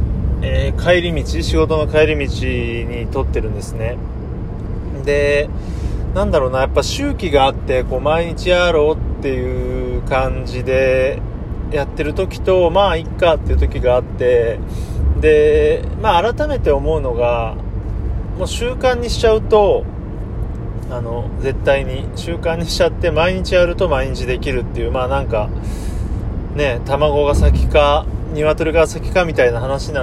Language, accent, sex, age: Japanese, native, male, 30-49